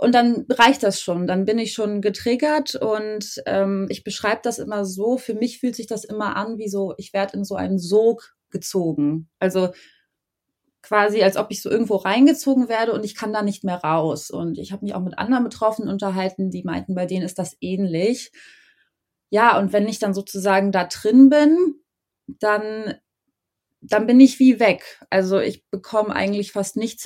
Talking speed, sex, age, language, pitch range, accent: 190 wpm, female, 20-39, English, 185-230 Hz, German